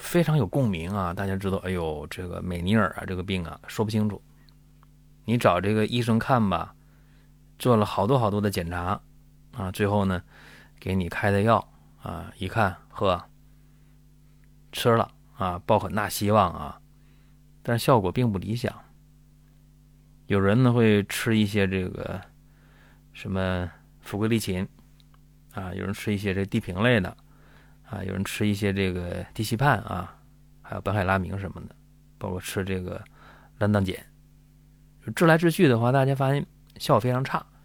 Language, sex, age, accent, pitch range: Chinese, male, 20-39, native, 95-145 Hz